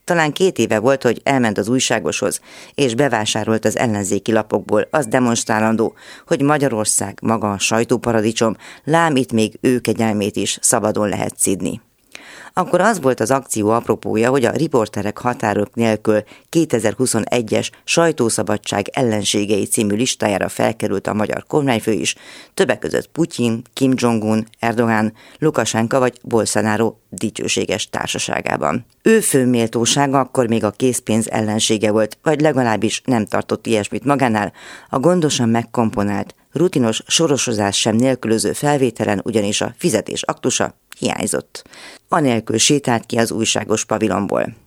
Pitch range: 110-130 Hz